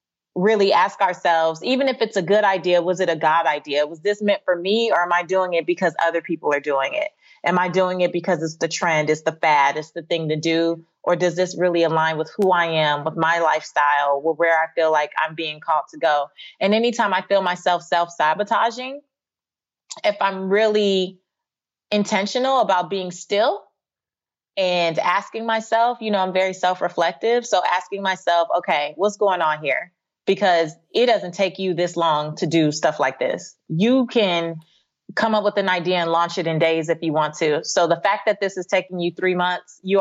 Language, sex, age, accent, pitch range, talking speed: English, female, 30-49, American, 165-210 Hz, 205 wpm